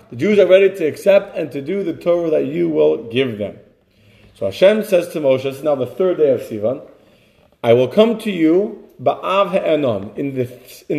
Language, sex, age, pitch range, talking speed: English, male, 40-59, 145-195 Hz, 200 wpm